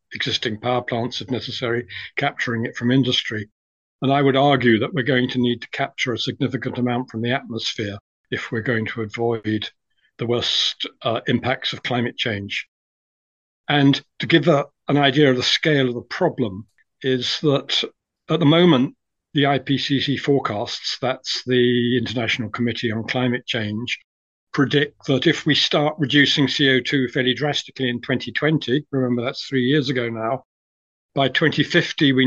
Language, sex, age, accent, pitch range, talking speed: English, male, 50-69, British, 120-140 Hz, 155 wpm